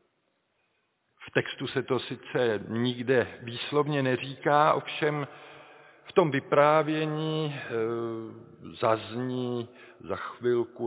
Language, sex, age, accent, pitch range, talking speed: Czech, male, 50-69, native, 105-130 Hz, 75 wpm